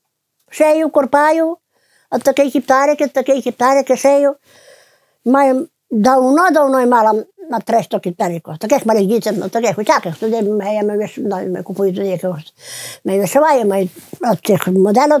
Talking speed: 105 wpm